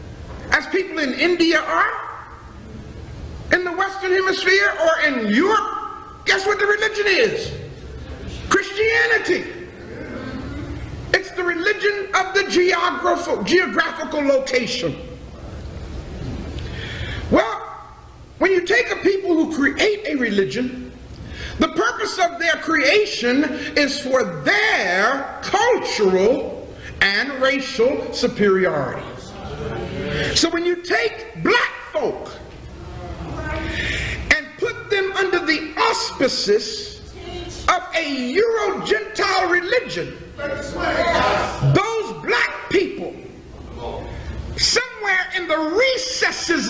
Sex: male